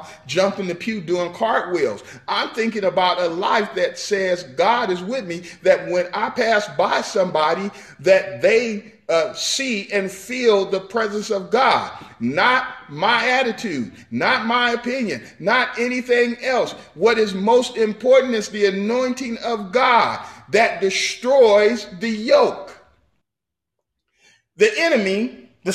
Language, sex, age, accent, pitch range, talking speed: English, male, 40-59, American, 185-235 Hz, 135 wpm